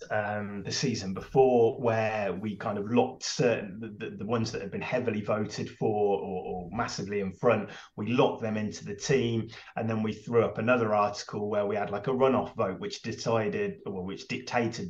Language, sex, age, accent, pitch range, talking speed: English, male, 20-39, British, 100-120 Hz, 200 wpm